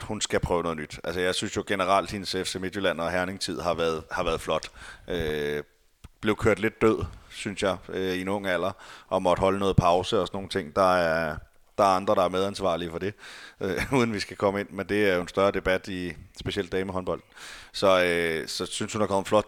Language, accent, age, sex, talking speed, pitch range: Danish, native, 30-49, male, 230 wpm, 90-105 Hz